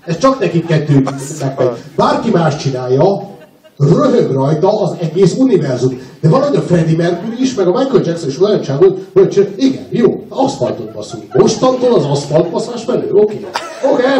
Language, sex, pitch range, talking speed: Hungarian, male, 120-180 Hz, 150 wpm